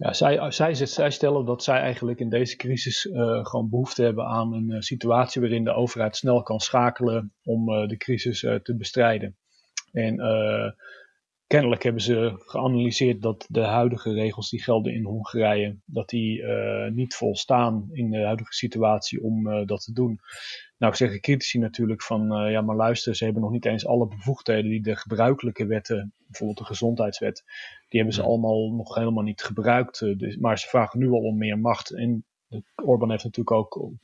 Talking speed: 180 wpm